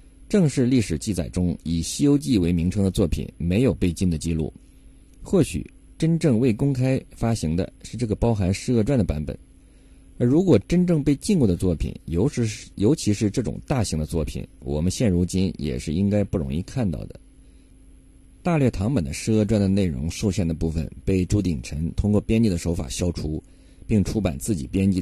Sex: male